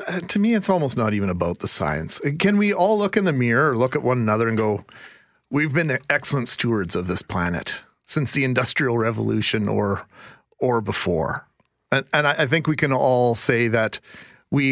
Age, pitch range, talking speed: 40-59, 125-165 Hz, 195 wpm